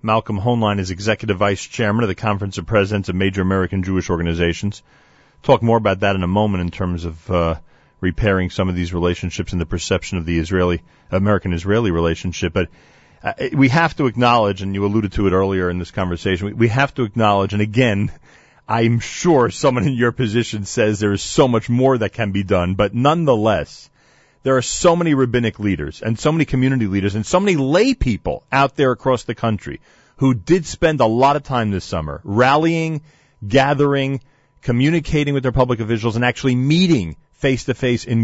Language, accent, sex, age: English, American, male, 40-59